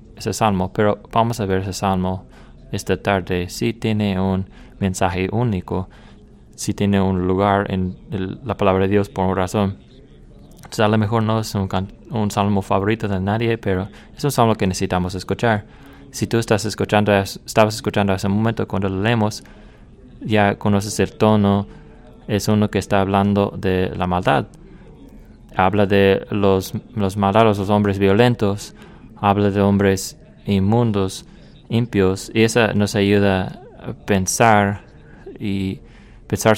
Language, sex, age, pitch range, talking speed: English, male, 20-39, 95-105 Hz, 155 wpm